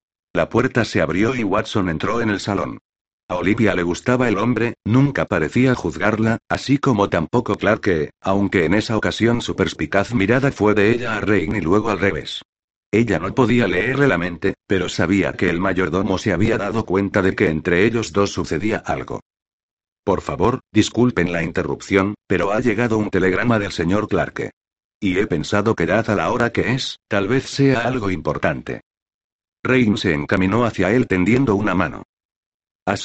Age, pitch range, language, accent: 60-79, 95-115 Hz, Spanish, Spanish